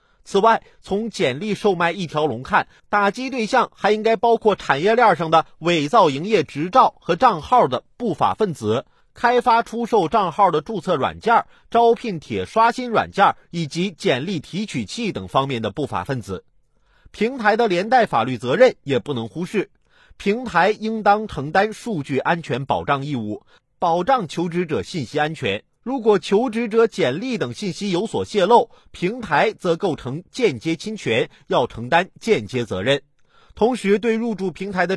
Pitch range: 160-225 Hz